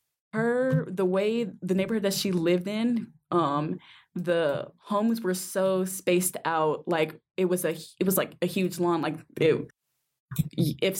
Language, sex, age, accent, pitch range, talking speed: English, female, 10-29, American, 170-205 Hz, 160 wpm